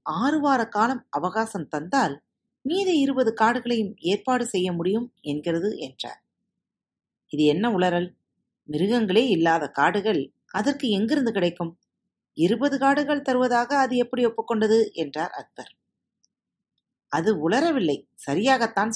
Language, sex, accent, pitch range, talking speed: Tamil, female, native, 185-245 Hz, 95 wpm